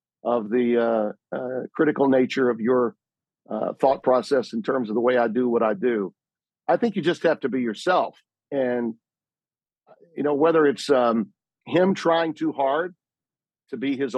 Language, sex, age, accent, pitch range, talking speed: English, male, 50-69, American, 120-155 Hz, 180 wpm